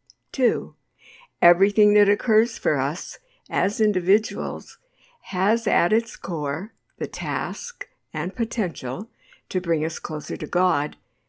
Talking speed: 115 wpm